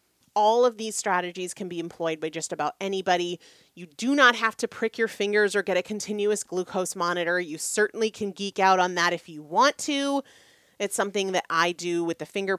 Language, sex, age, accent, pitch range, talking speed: English, female, 30-49, American, 180-235 Hz, 210 wpm